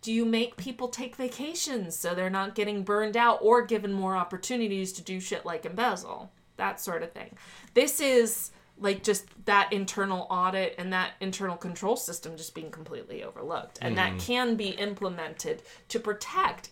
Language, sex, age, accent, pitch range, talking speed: English, female, 30-49, American, 185-250 Hz, 170 wpm